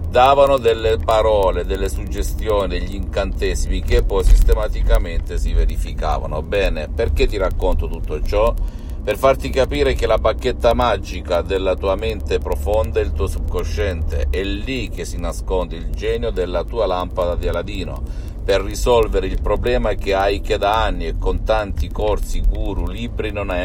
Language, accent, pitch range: Italian, native, 75-100 Hz